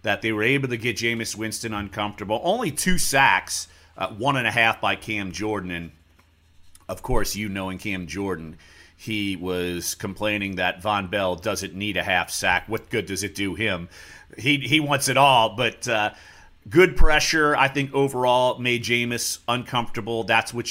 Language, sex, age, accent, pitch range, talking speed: English, male, 40-59, American, 100-130 Hz, 175 wpm